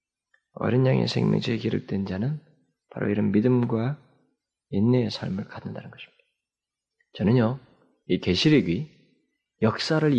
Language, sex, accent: Korean, male, native